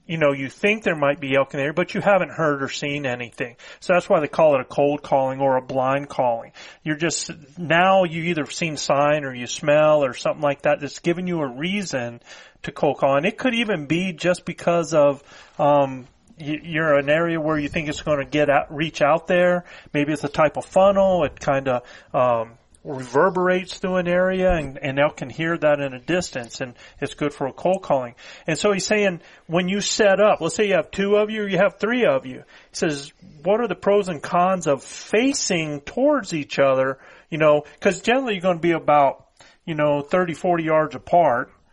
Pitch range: 140-180 Hz